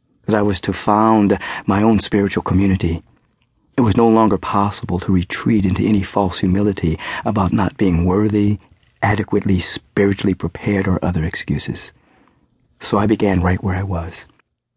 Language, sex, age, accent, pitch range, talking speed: English, male, 50-69, American, 95-110 Hz, 145 wpm